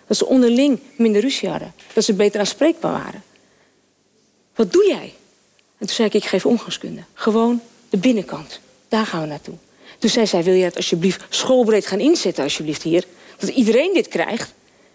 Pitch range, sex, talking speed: 200-265 Hz, female, 175 wpm